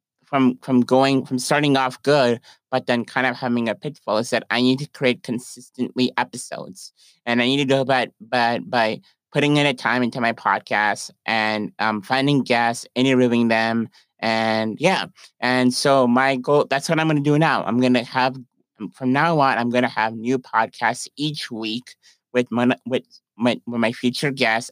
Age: 20-39